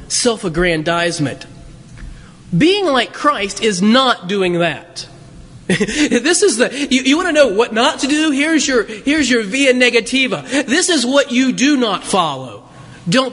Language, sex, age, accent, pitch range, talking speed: English, male, 30-49, American, 170-260 Hz, 155 wpm